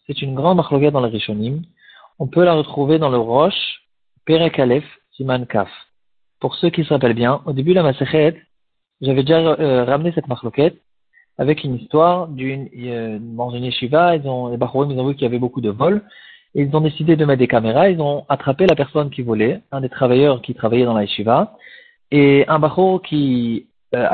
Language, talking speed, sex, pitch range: French, 195 wpm, male, 125-160 Hz